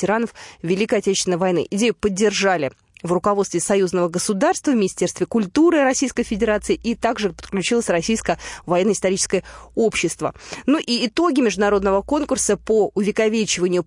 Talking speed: 115 wpm